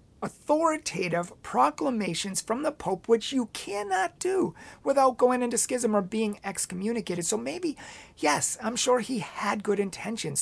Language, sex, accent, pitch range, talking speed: English, male, American, 185-245 Hz, 145 wpm